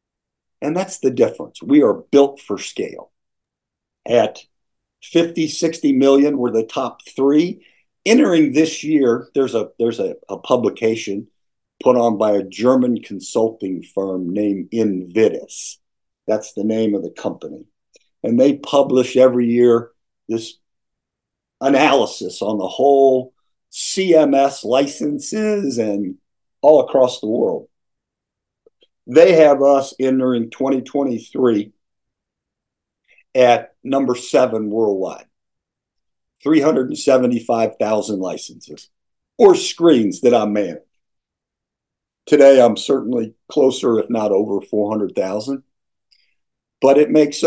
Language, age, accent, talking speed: English, 50-69, American, 105 wpm